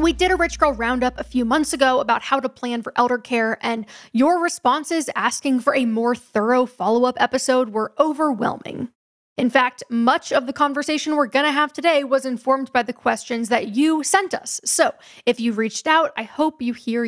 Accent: American